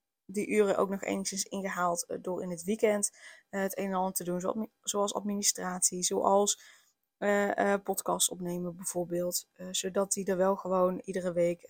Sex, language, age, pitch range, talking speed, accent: female, Dutch, 20-39, 185-215 Hz, 165 wpm, Dutch